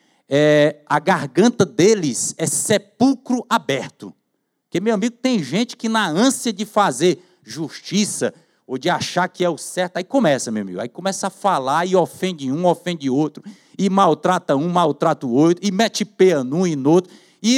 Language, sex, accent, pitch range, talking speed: Portuguese, male, Brazilian, 180-245 Hz, 180 wpm